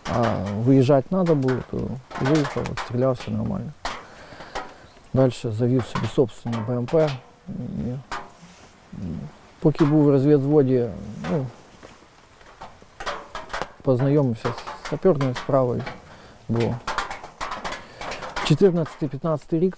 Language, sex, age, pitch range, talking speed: Ukrainian, male, 40-59, 115-145 Hz, 70 wpm